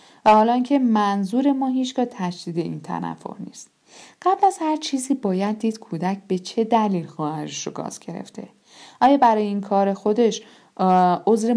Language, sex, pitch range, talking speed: Persian, female, 175-230 Hz, 160 wpm